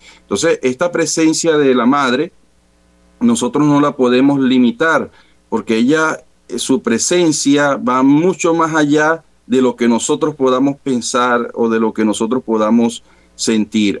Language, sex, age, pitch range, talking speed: Spanish, male, 40-59, 110-145 Hz, 135 wpm